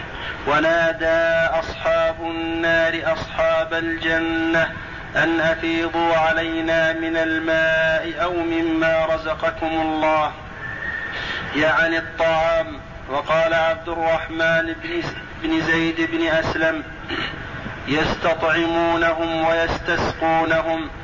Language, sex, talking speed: Arabic, male, 70 wpm